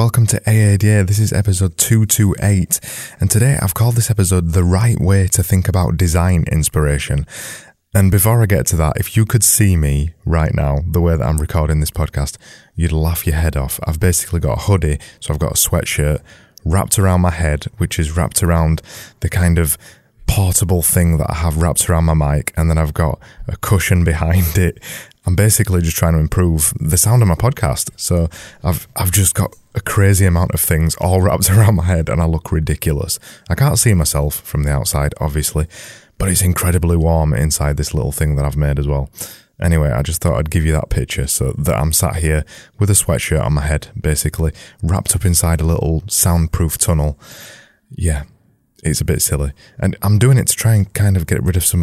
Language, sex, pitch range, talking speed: English, male, 80-100 Hz, 210 wpm